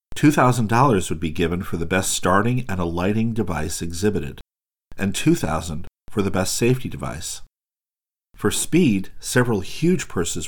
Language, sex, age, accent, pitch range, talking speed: English, male, 50-69, American, 85-110 Hz, 155 wpm